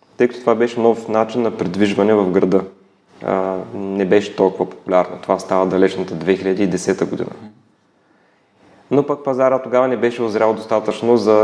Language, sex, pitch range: Bulgarian, male, 95-125 Hz